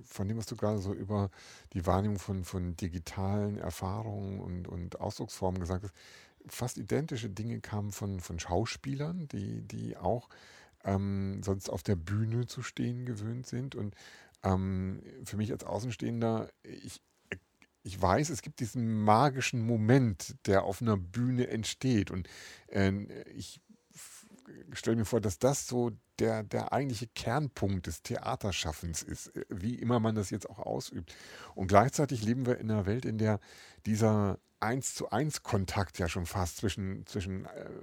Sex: male